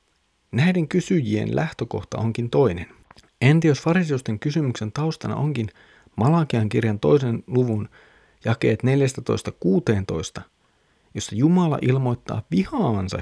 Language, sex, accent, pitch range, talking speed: Finnish, male, native, 100-160 Hz, 95 wpm